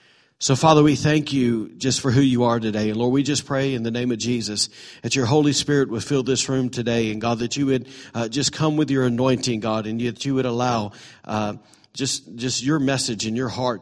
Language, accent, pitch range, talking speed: English, American, 125-160 Hz, 240 wpm